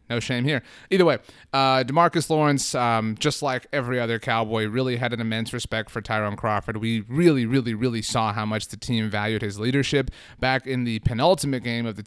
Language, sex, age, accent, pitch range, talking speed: English, male, 30-49, American, 110-130 Hz, 205 wpm